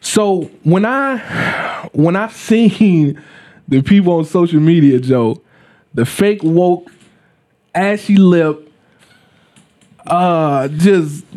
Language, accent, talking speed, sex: English, American, 100 wpm, male